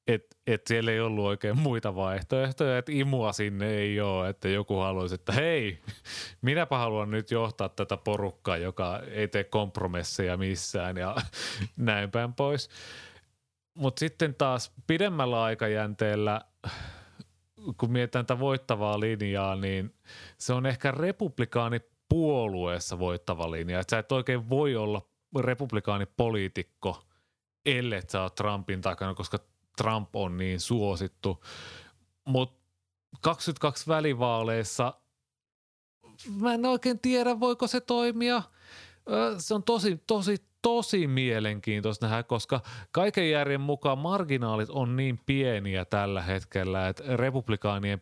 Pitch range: 95-130 Hz